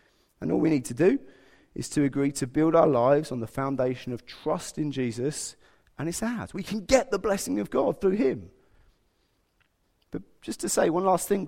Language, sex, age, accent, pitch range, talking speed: English, male, 30-49, British, 135-180 Hz, 205 wpm